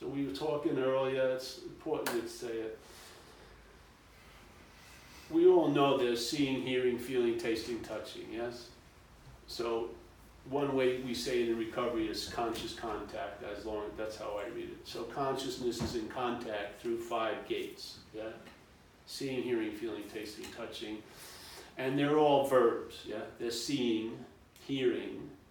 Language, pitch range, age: English, 120-185 Hz, 40-59